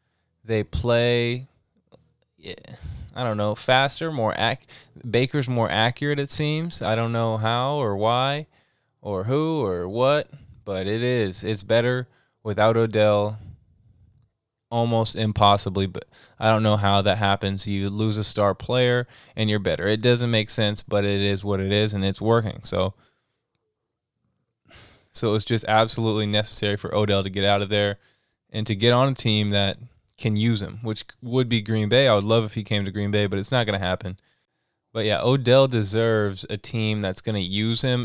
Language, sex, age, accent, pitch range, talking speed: English, male, 20-39, American, 100-115 Hz, 185 wpm